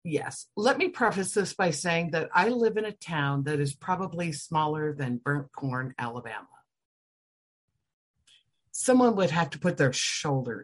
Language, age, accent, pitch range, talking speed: English, 60-79, American, 140-205 Hz, 160 wpm